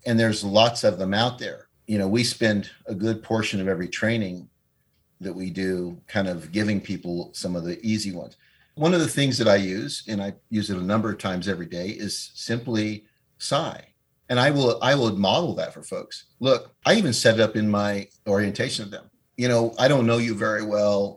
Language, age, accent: English, 50-69, American